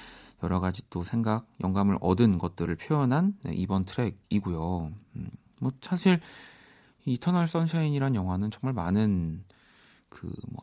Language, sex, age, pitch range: Korean, male, 30-49, 95-135 Hz